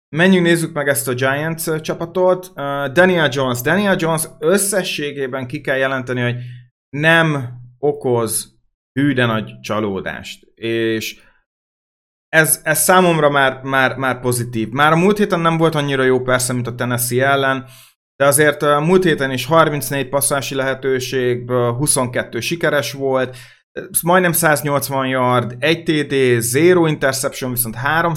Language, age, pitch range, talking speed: Hungarian, 30-49, 125-160 Hz, 135 wpm